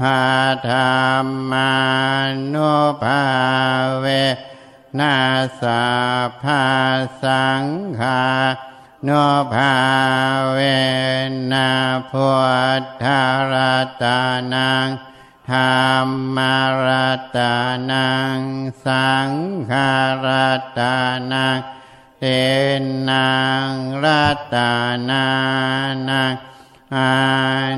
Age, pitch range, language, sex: 60-79, 130-135 Hz, Thai, male